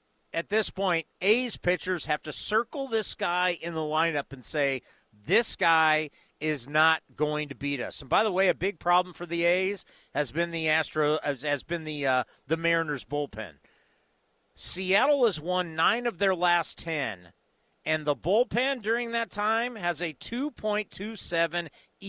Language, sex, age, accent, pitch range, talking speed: English, male, 40-59, American, 145-220 Hz, 165 wpm